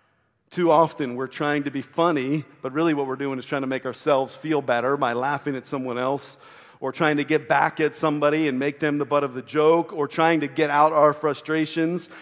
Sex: male